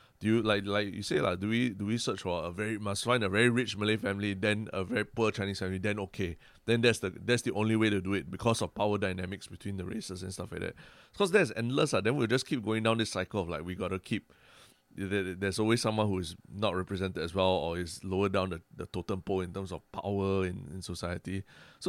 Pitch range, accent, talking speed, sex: 95-110 Hz, Malaysian, 260 wpm, male